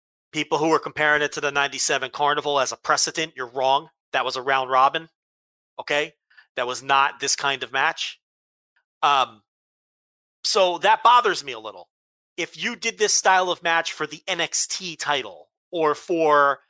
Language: English